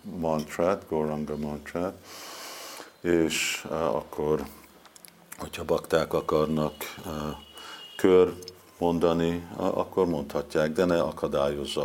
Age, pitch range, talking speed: 50-69, 75-85 Hz, 90 wpm